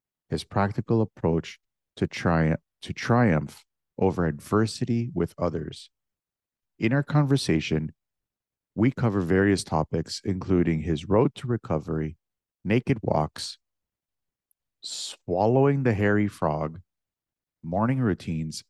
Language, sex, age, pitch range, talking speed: English, male, 50-69, 80-110 Hz, 100 wpm